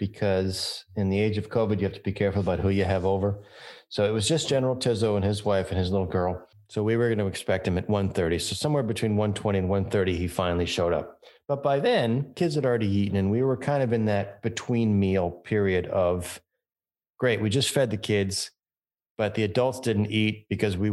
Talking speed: 225 wpm